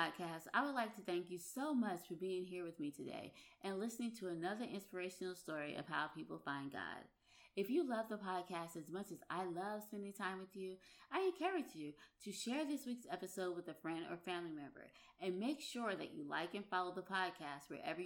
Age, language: 20-39, English